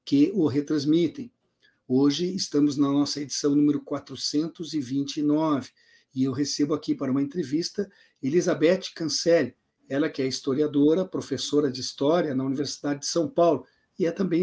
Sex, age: male, 50-69